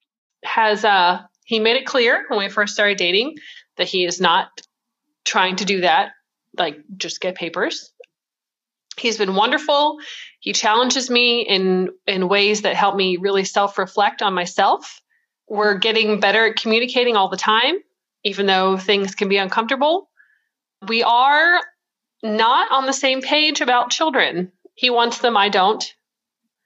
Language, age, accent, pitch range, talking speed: English, 30-49, American, 200-275 Hz, 150 wpm